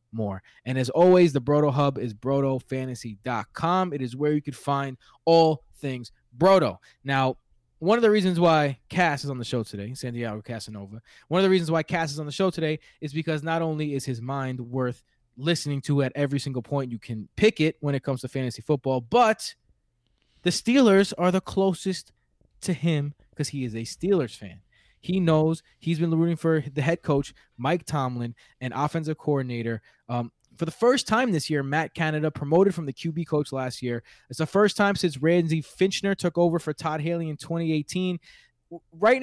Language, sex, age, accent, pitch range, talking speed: English, male, 20-39, American, 130-170 Hz, 195 wpm